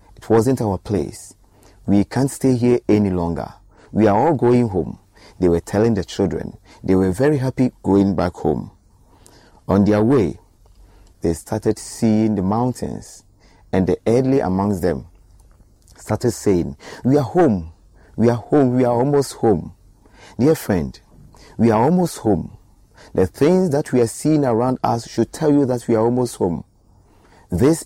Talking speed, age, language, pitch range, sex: 160 wpm, 40-59, English, 95-125 Hz, male